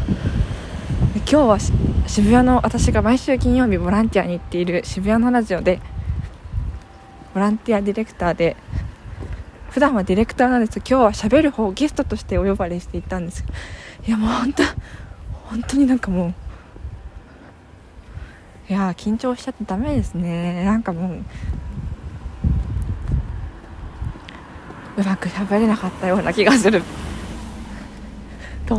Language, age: Japanese, 20-39